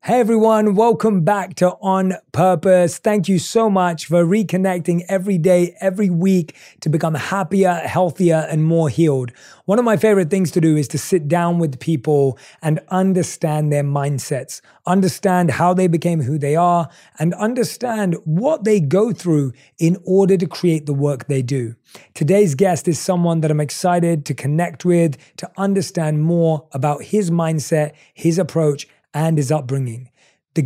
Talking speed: 165 wpm